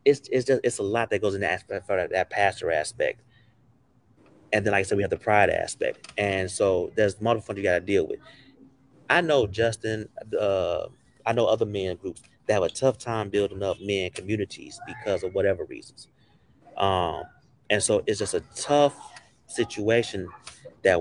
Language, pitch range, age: English, 100-125 Hz, 30-49